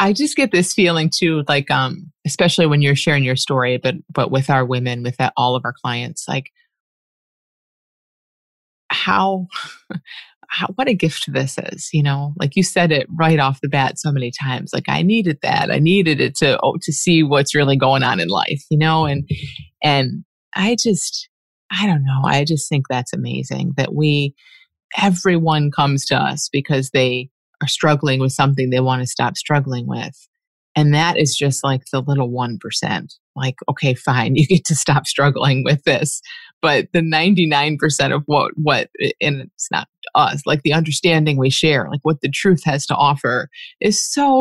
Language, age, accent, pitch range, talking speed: English, 30-49, American, 135-175 Hz, 185 wpm